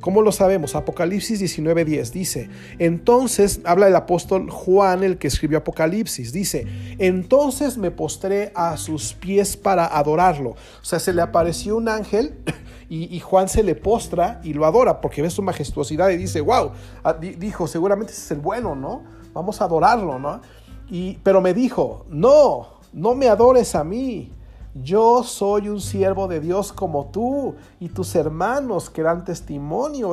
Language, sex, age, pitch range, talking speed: Spanish, male, 40-59, 150-200 Hz, 160 wpm